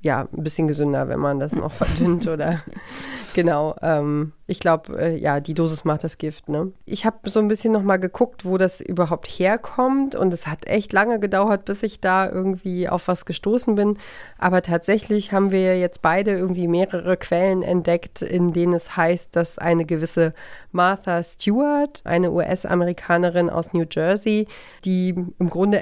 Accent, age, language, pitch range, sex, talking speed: German, 30-49, German, 165-195 Hz, female, 175 wpm